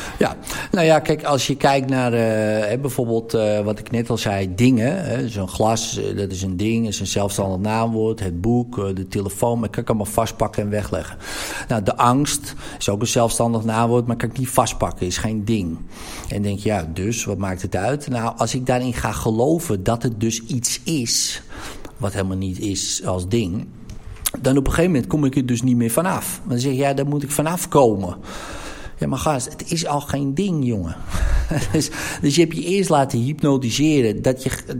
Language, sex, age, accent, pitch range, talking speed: Dutch, male, 50-69, Dutch, 105-140 Hz, 225 wpm